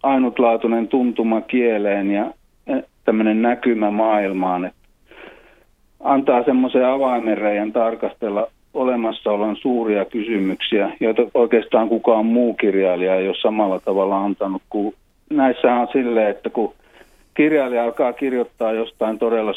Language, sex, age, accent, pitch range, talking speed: Finnish, male, 40-59, native, 105-120 Hz, 105 wpm